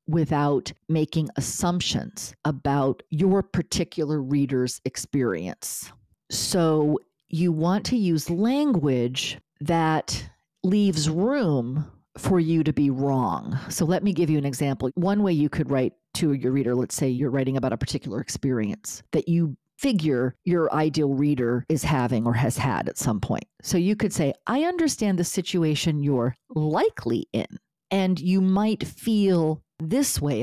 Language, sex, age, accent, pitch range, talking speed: English, female, 40-59, American, 140-190 Hz, 150 wpm